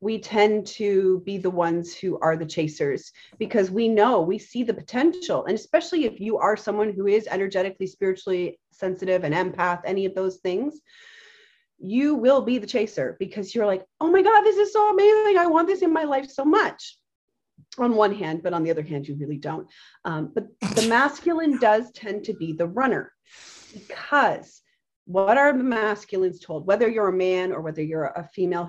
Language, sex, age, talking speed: English, female, 30-49, 195 wpm